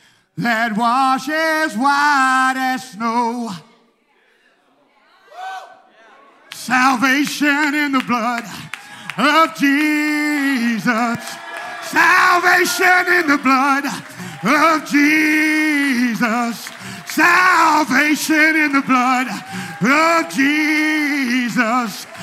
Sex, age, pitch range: male, 40-59, 255-360 Hz